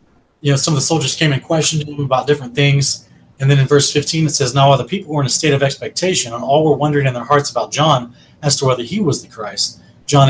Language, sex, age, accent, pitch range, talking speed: English, male, 30-49, American, 125-150 Hz, 275 wpm